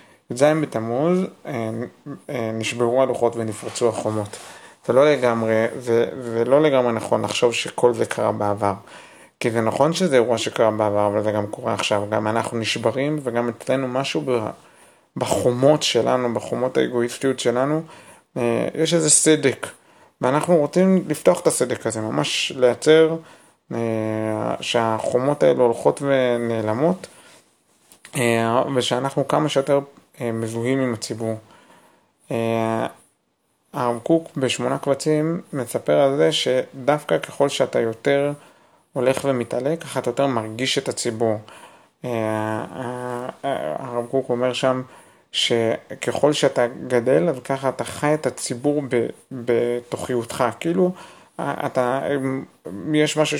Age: 30-49